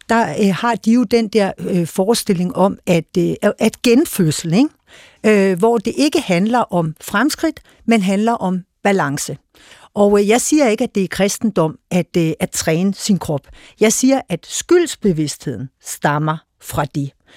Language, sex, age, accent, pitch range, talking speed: Danish, female, 60-79, native, 175-230 Hz, 160 wpm